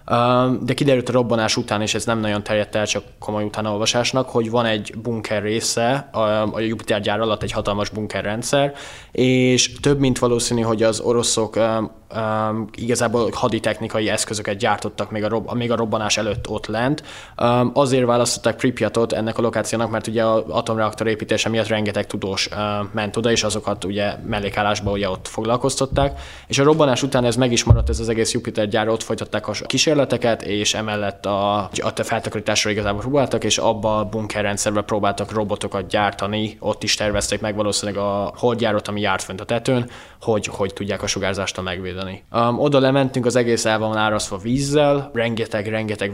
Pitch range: 105-120 Hz